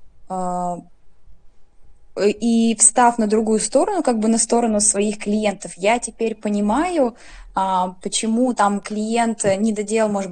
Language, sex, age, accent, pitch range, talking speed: Russian, female, 20-39, native, 195-230 Hz, 115 wpm